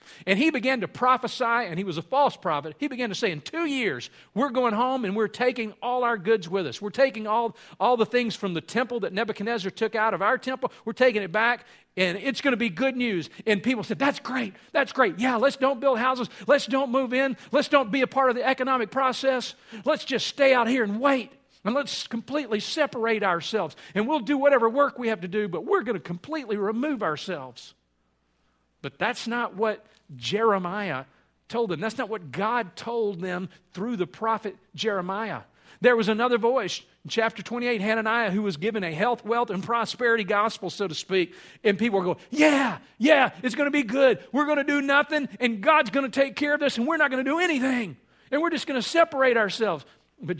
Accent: American